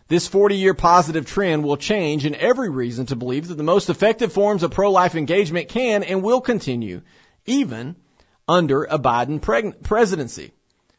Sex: male